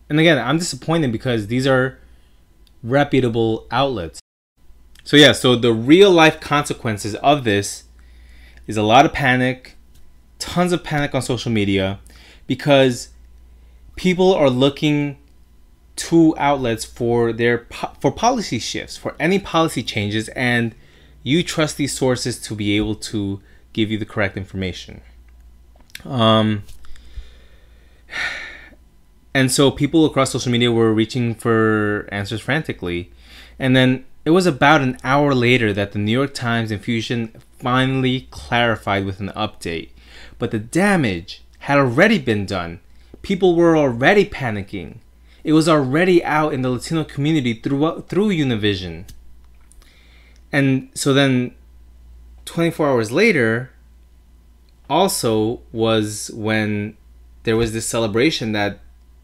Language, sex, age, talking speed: English, male, 20-39, 125 wpm